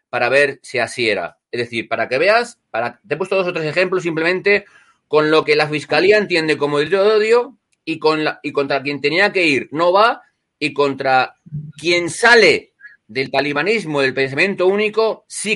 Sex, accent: male, Spanish